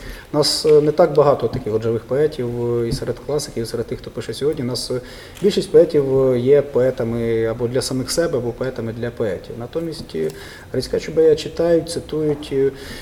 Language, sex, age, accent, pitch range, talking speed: Ukrainian, male, 30-49, native, 125-155 Hz, 165 wpm